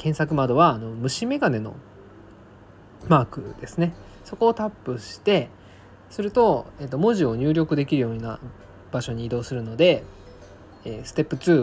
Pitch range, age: 100-155 Hz, 20-39